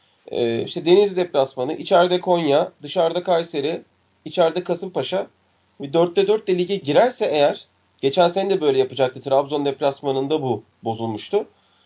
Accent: native